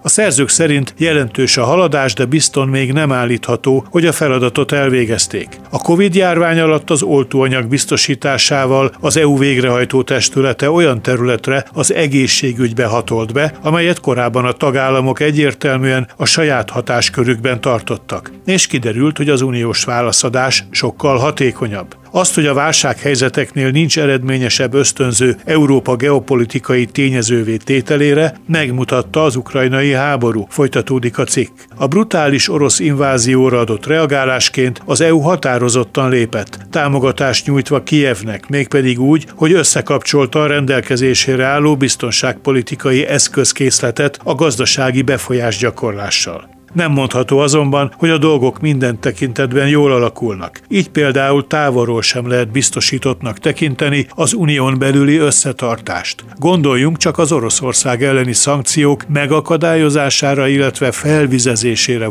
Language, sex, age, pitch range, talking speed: Hungarian, male, 60-79, 125-145 Hz, 120 wpm